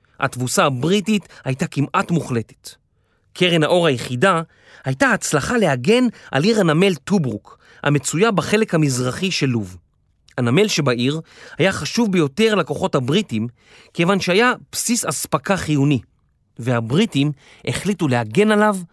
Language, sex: Hebrew, male